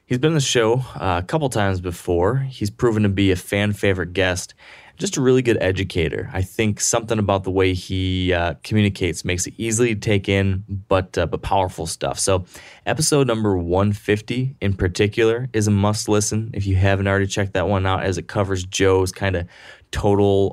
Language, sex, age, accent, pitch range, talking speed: English, male, 20-39, American, 90-110 Hz, 195 wpm